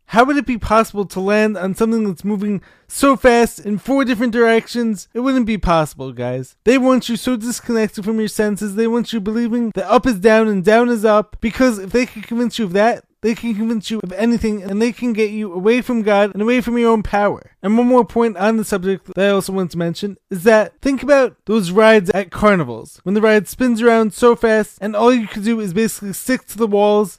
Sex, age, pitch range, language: male, 20-39, 205-235 Hz, English